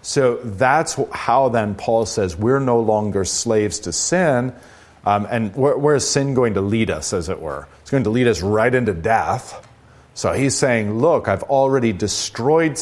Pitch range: 95-120 Hz